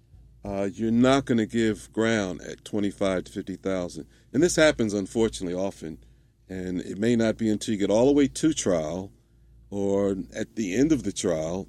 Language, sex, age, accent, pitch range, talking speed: English, male, 50-69, American, 95-120 Hz, 185 wpm